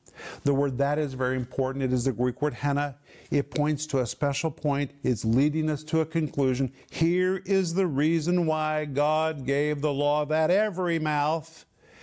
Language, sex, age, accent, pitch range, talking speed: English, male, 50-69, American, 135-170 Hz, 180 wpm